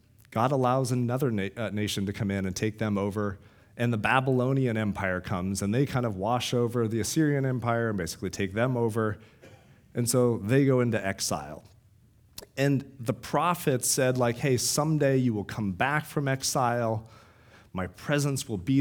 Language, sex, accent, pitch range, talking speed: English, male, American, 110-135 Hz, 170 wpm